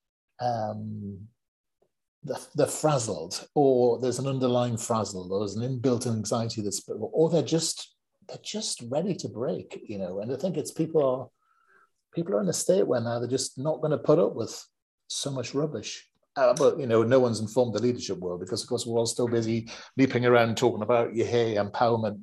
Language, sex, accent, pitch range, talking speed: English, male, British, 120-165 Hz, 195 wpm